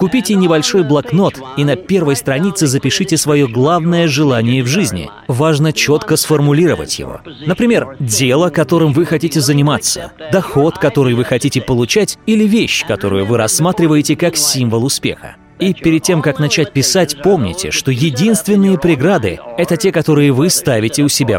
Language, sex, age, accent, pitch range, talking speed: Russian, male, 30-49, native, 135-175 Hz, 150 wpm